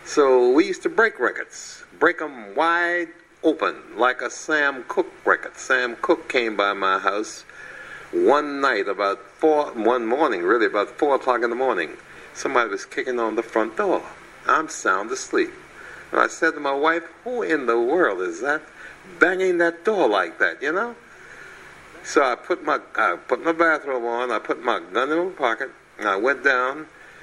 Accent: American